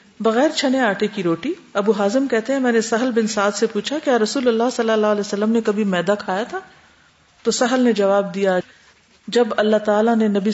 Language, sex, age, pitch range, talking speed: Urdu, female, 50-69, 195-240 Hz, 215 wpm